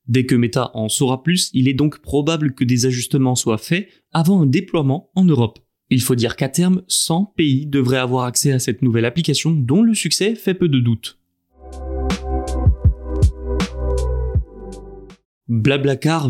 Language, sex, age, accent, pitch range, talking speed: French, male, 20-39, French, 125-170 Hz, 155 wpm